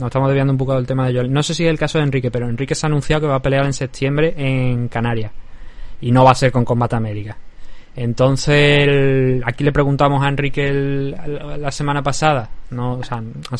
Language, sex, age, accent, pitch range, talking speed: Spanish, male, 20-39, Spanish, 125-140 Hz, 240 wpm